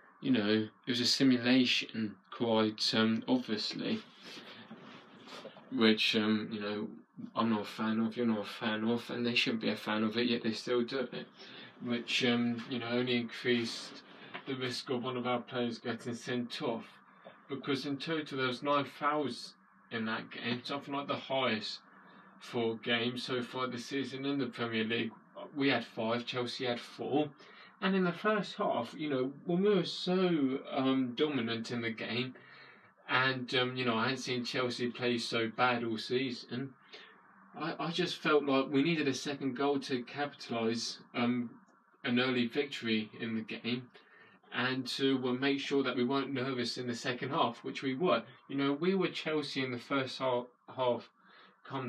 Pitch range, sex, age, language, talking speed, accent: 120-140 Hz, male, 20-39, English, 180 wpm, British